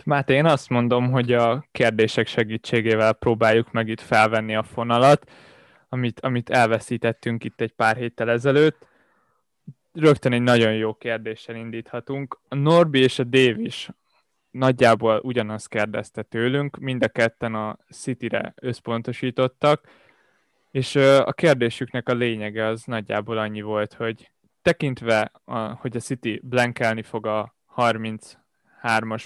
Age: 20-39